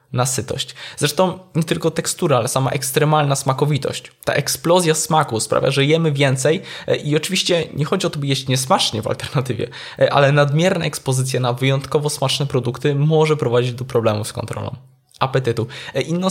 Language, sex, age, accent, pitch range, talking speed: Polish, male, 20-39, native, 120-150 Hz, 155 wpm